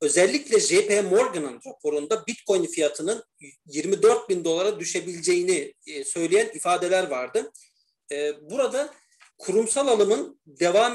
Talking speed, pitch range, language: 95 wpm, 185-285 Hz, Turkish